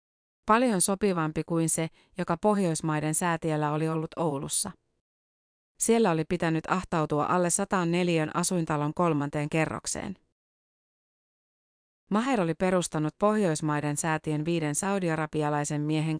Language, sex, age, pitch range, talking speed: Finnish, female, 30-49, 155-185 Hz, 100 wpm